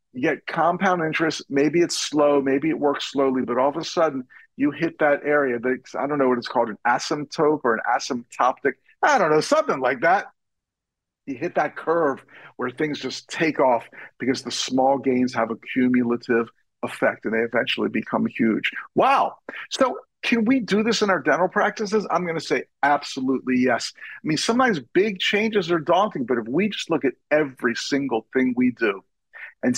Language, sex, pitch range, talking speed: English, male, 130-170 Hz, 190 wpm